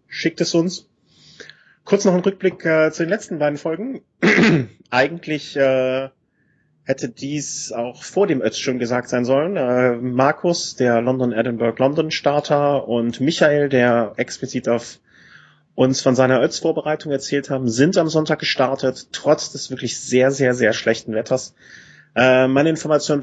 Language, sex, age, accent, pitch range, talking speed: German, male, 30-49, German, 125-150 Hz, 150 wpm